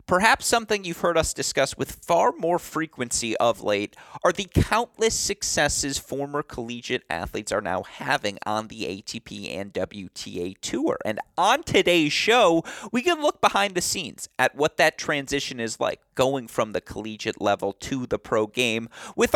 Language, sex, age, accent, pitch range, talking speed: English, male, 30-49, American, 110-145 Hz, 165 wpm